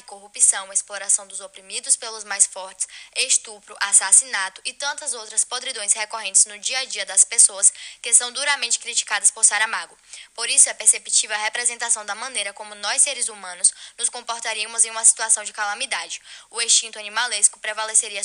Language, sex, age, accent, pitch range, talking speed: Portuguese, female, 10-29, Brazilian, 205-235 Hz, 165 wpm